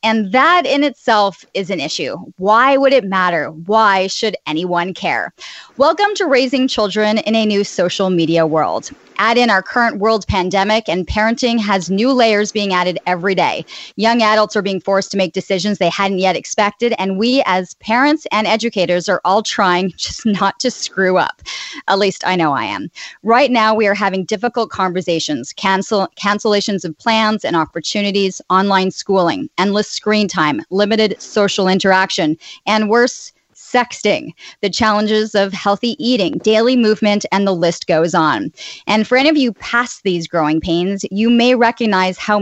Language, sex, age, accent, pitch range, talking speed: English, female, 30-49, American, 190-235 Hz, 170 wpm